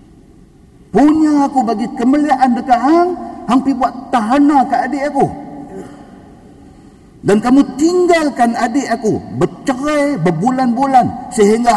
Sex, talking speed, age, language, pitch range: male, 100 wpm, 50-69, Malay, 210-280 Hz